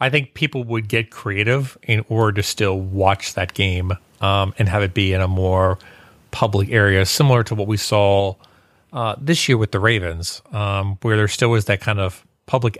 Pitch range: 100-120 Hz